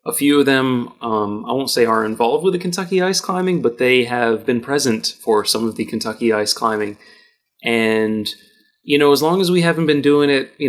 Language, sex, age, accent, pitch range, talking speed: English, male, 30-49, American, 115-150 Hz, 220 wpm